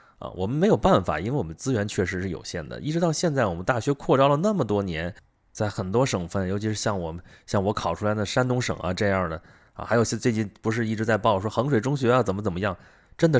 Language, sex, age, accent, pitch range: Chinese, male, 20-39, native, 95-140 Hz